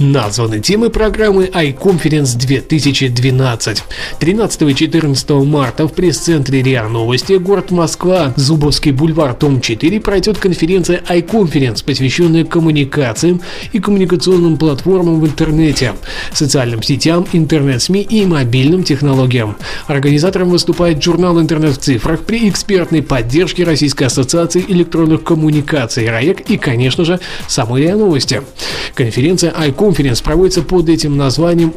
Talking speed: 110 wpm